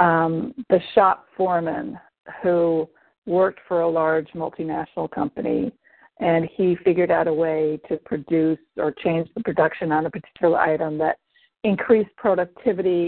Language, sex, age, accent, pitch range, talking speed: English, female, 50-69, American, 165-195 Hz, 135 wpm